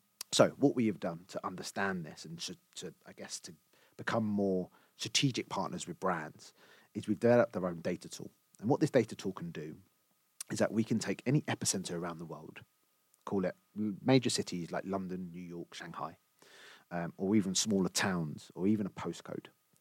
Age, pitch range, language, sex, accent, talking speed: 30-49, 90-120 Hz, English, male, British, 190 wpm